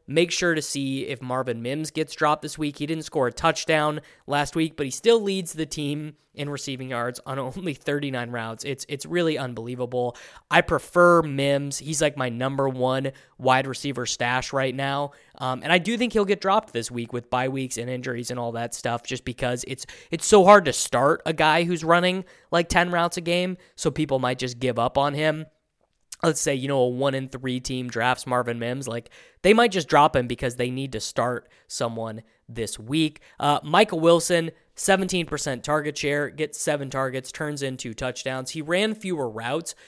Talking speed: 200 wpm